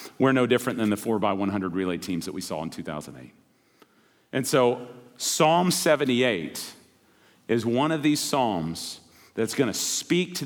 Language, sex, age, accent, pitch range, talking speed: English, male, 40-59, American, 120-150 Hz, 160 wpm